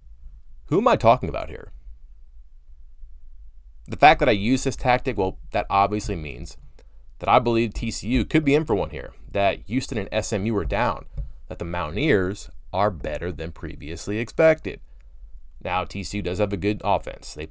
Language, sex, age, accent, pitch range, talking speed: English, male, 30-49, American, 70-110 Hz, 170 wpm